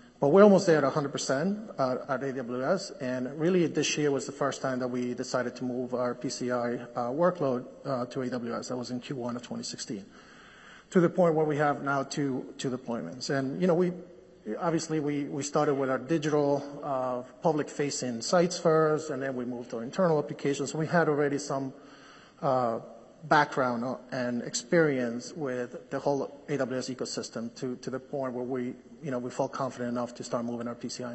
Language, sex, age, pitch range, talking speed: English, male, 30-49, 125-150 Hz, 190 wpm